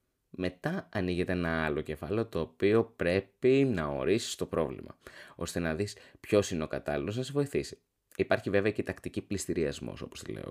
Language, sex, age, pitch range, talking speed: Greek, male, 20-39, 85-110 Hz, 175 wpm